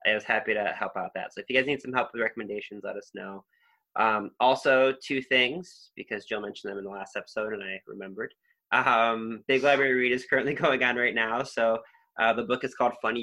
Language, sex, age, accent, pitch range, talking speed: English, male, 20-39, American, 105-125 Hz, 230 wpm